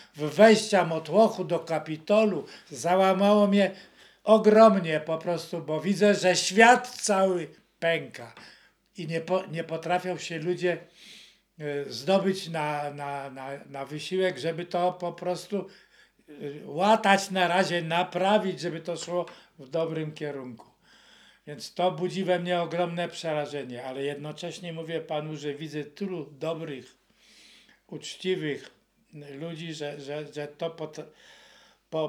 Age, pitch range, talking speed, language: 60-79, 160-195 Hz, 120 wpm, Polish